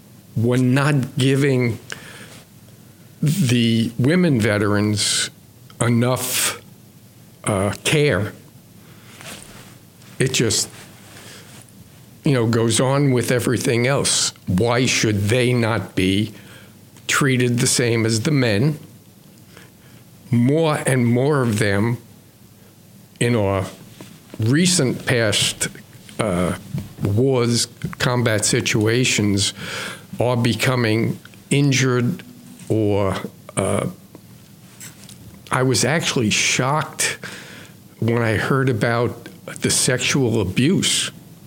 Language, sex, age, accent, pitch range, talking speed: English, male, 50-69, American, 110-135 Hz, 85 wpm